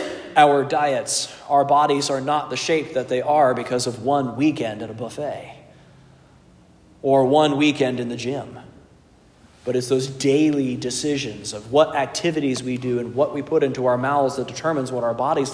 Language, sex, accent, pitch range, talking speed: English, male, American, 130-175 Hz, 180 wpm